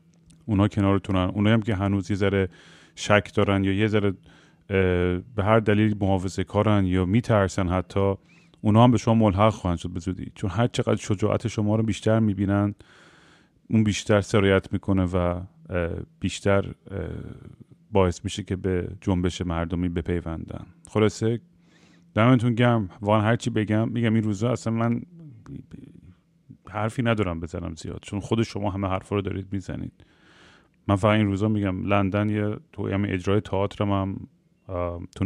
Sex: male